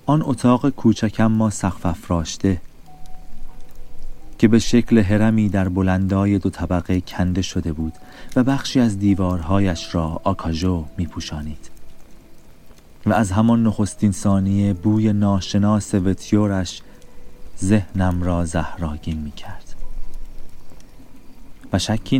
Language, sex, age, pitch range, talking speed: Persian, male, 30-49, 85-105 Hz, 105 wpm